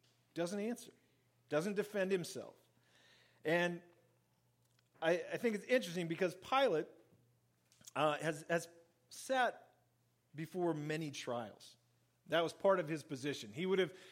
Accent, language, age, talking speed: American, English, 40-59, 125 wpm